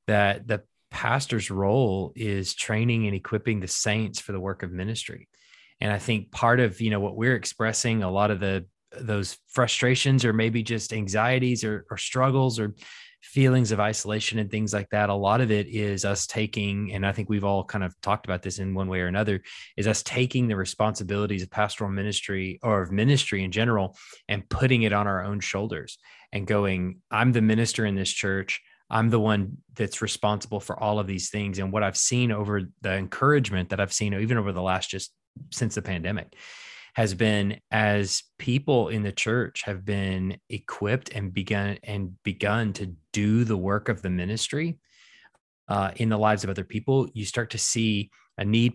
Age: 20-39